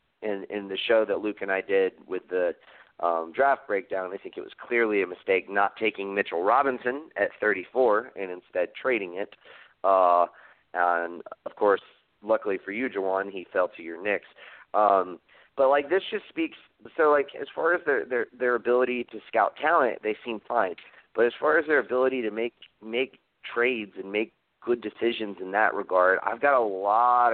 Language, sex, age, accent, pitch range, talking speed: English, male, 30-49, American, 100-125 Hz, 190 wpm